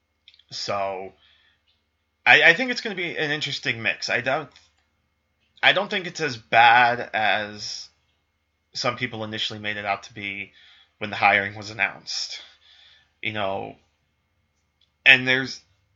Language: English